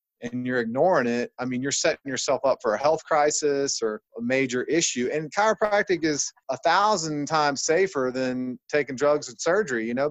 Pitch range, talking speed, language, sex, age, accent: 125-150 Hz, 190 wpm, English, male, 30-49, American